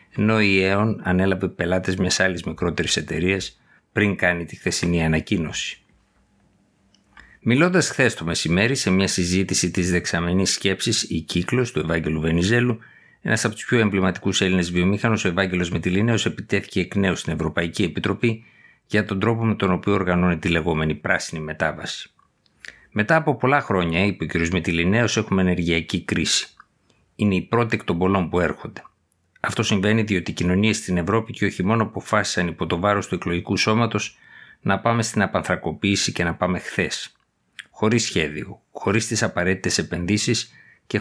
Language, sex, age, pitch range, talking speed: Greek, male, 50-69, 90-110 Hz, 155 wpm